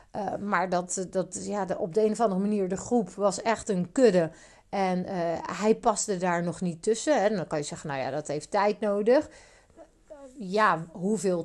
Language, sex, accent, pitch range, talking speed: Dutch, female, Dutch, 175-245 Hz, 200 wpm